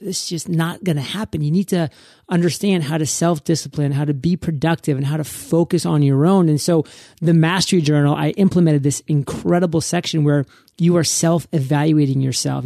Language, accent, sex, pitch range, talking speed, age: English, American, male, 145-185 Hz, 185 wpm, 30-49